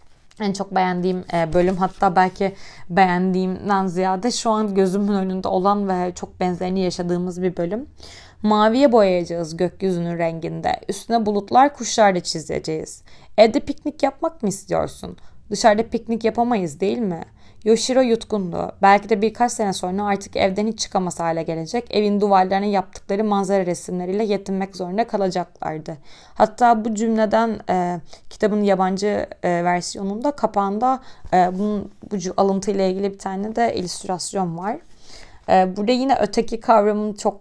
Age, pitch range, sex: 20-39, 180-220 Hz, female